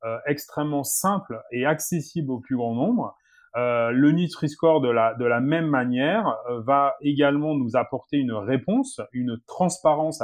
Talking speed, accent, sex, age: 160 wpm, French, male, 30-49